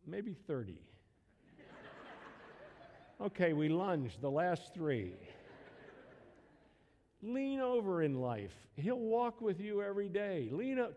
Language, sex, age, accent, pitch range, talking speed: English, male, 50-69, American, 120-185 Hz, 110 wpm